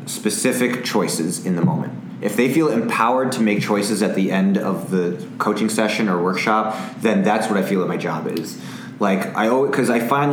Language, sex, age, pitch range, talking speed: English, male, 30-49, 95-120 Hz, 210 wpm